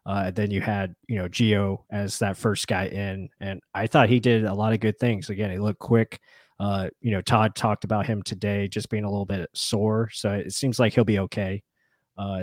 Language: English